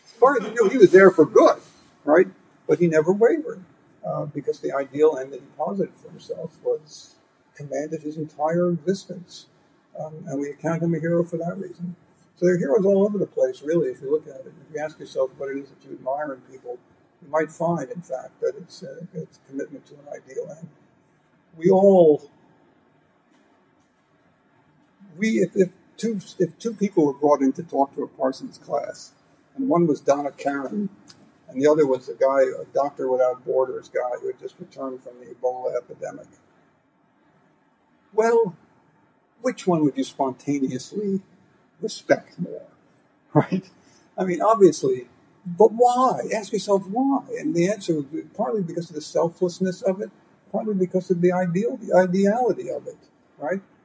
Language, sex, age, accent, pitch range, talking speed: English, male, 60-79, American, 150-220 Hz, 180 wpm